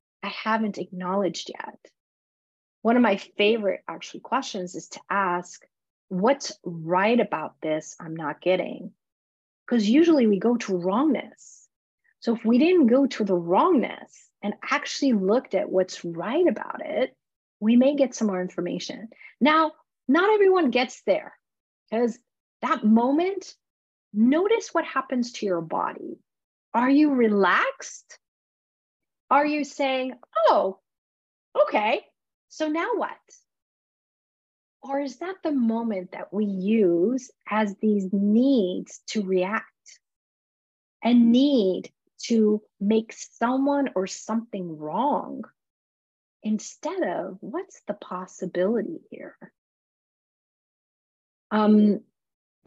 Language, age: English, 30-49